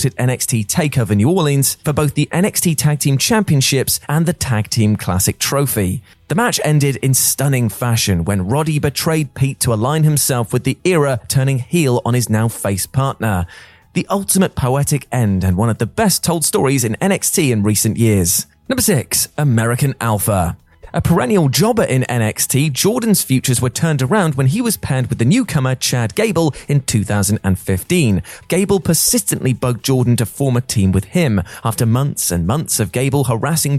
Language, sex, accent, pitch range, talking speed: English, male, British, 105-150 Hz, 175 wpm